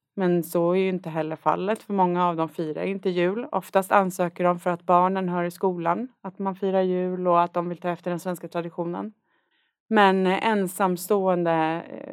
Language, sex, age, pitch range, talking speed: Swedish, female, 30-49, 170-195 Hz, 190 wpm